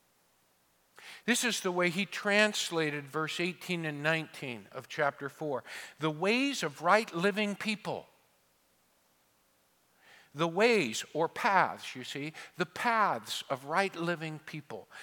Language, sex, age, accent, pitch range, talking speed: English, male, 50-69, American, 145-215 Hz, 115 wpm